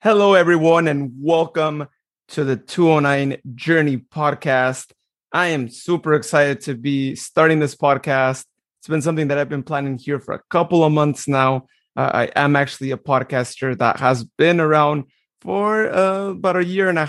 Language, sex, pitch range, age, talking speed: English, male, 135-160 Hz, 30-49, 170 wpm